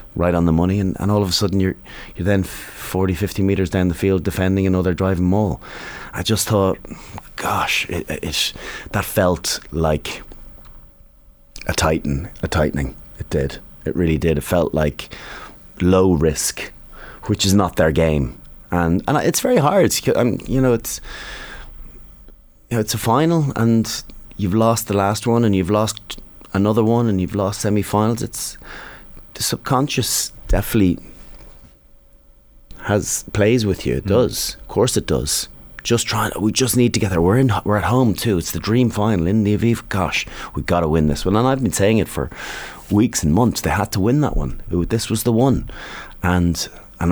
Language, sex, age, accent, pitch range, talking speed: English, male, 30-49, Irish, 85-110 Hz, 185 wpm